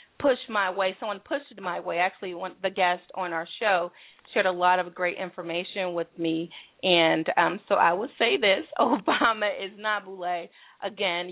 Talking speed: 175 wpm